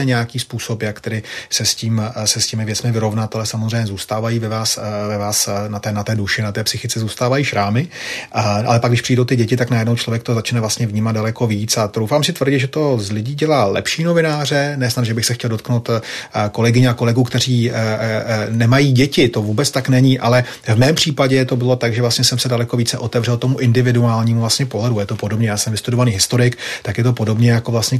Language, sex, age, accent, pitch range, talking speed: Czech, male, 30-49, native, 110-130 Hz, 215 wpm